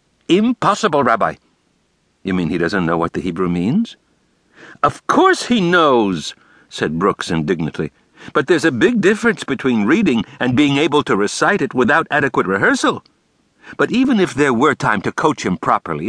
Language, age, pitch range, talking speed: English, 60-79, 140-215 Hz, 165 wpm